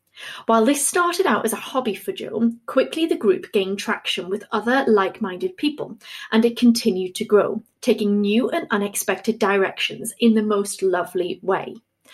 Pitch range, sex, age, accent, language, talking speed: 205-245 Hz, female, 30-49, British, English, 165 wpm